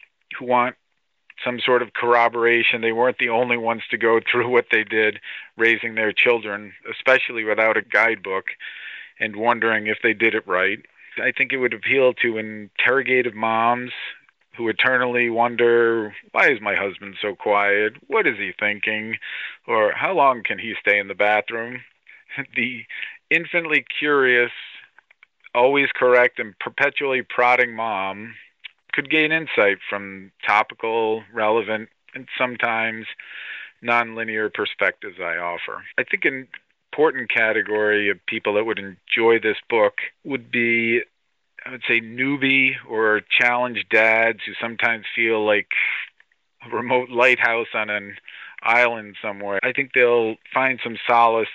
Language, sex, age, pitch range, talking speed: English, male, 40-59, 110-125 Hz, 140 wpm